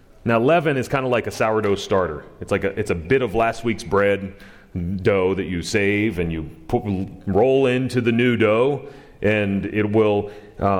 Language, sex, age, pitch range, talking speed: English, male, 30-49, 100-160 Hz, 190 wpm